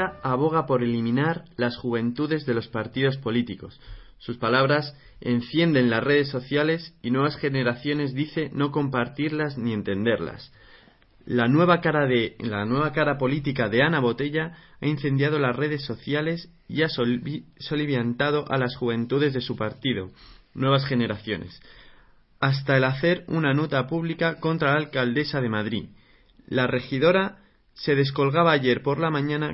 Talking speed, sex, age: 135 wpm, male, 20-39